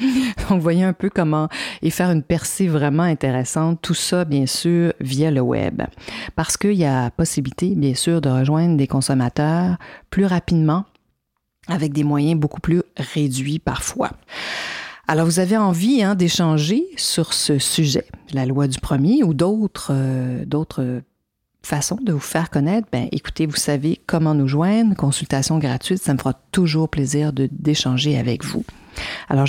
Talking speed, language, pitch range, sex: 160 wpm, French, 135-170 Hz, female